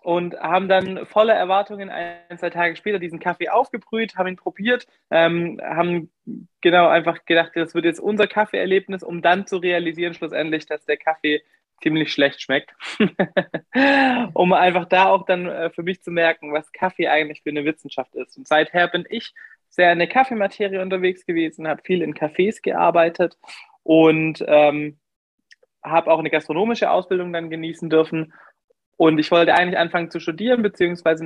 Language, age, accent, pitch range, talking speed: German, 20-39, German, 160-190 Hz, 165 wpm